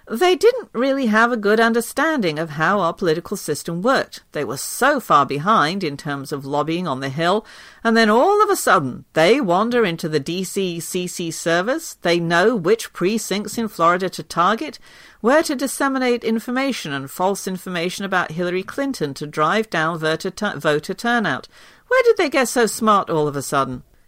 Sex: female